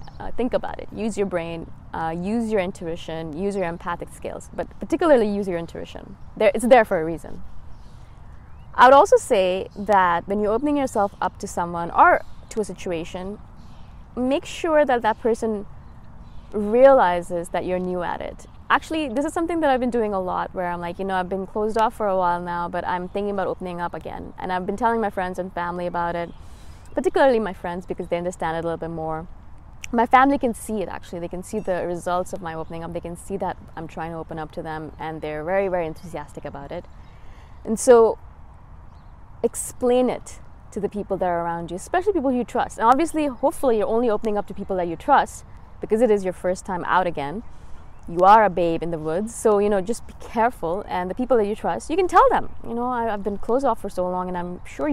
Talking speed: 225 wpm